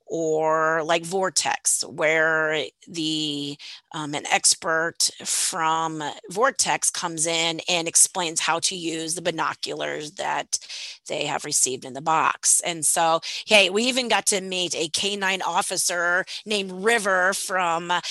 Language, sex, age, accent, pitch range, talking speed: English, female, 30-49, American, 165-210 Hz, 135 wpm